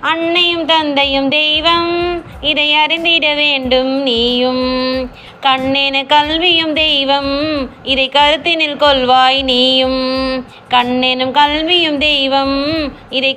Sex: female